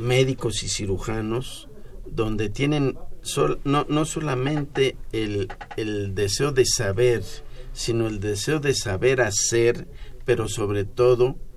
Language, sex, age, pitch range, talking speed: Spanish, male, 50-69, 100-125 Hz, 120 wpm